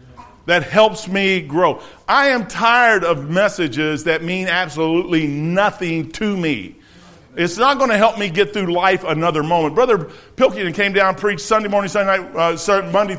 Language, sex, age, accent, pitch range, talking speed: English, male, 50-69, American, 165-230 Hz, 175 wpm